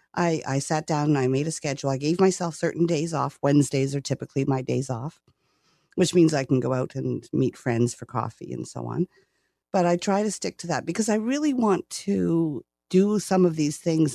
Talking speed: 220 wpm